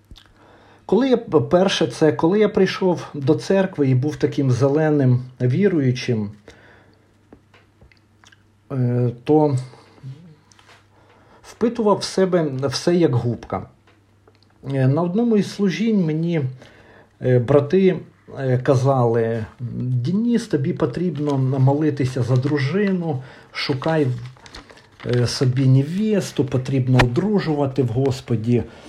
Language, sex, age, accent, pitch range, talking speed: Ukrainian, male, 50-69, native, 120-165 Hz, 85 wpm